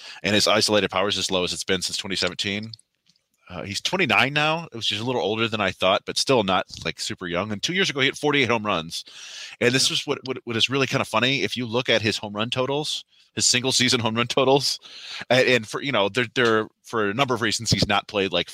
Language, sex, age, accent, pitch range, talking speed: English, male, 30-49, American, 90-120 Hz, 260 wpm